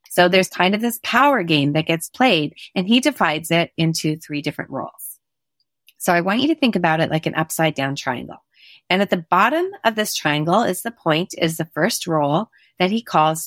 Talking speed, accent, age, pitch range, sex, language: 215 wpm, American, 30-49, 155-205 Hz, female, English